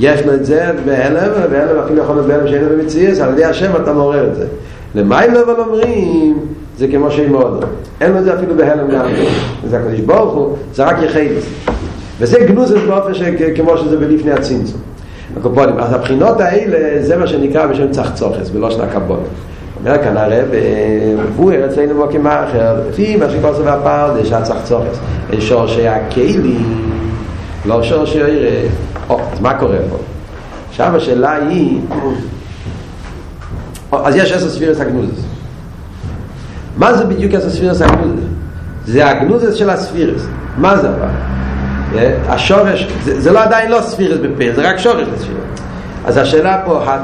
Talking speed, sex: 135 wpm, male